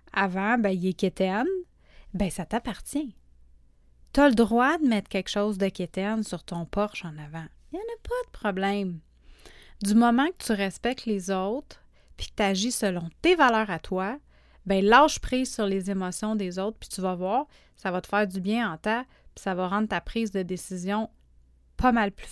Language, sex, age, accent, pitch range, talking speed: French, female, 30-49, Canadian, 185-220 Hz, 205 wpm